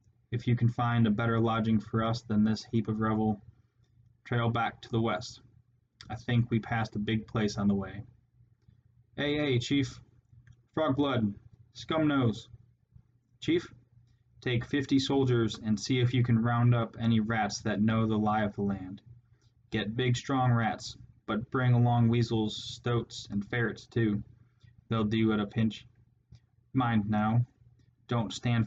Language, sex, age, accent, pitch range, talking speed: English, male, 20-39, American, 115-120 Hz, 165 wpm